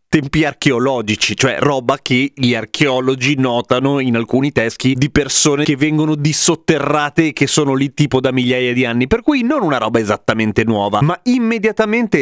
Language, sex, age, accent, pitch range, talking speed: Italian, male, 30-49, native, 120-155 Hz, 165 wpm